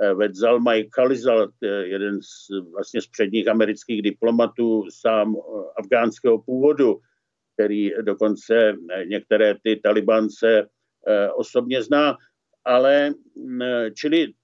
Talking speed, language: 85 wpm, Czech